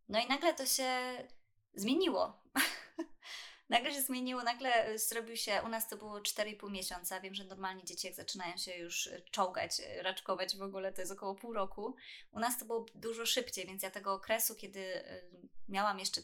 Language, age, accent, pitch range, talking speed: Polish, 20-39, native, 190-235 Hz, 175 wpm